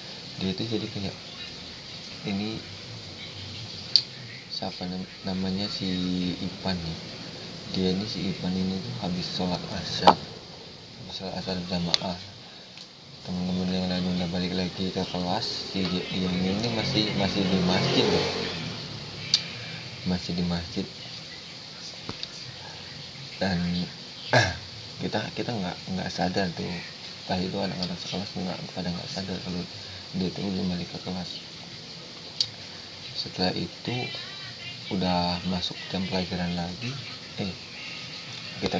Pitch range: 90-100 Hz